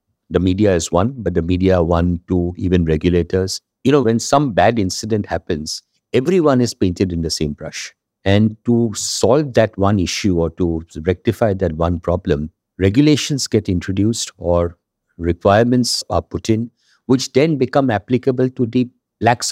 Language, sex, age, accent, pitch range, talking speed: English, male, 60-79, Indian, 90-125 Hz, 165 wpm